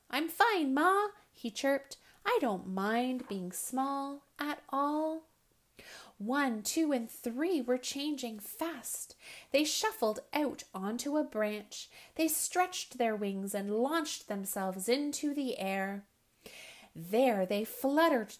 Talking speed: 125 wpm